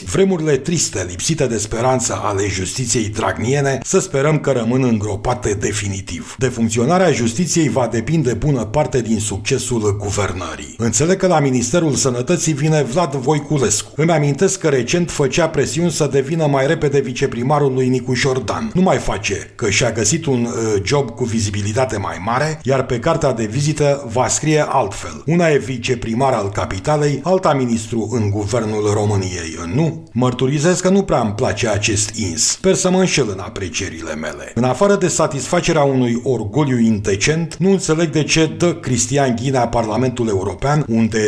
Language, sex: Romanian, male